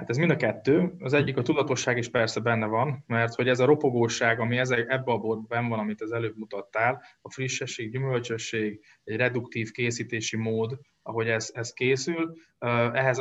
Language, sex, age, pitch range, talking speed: Hungarian, male, 20-39, 105-125 Hz, 180 wpm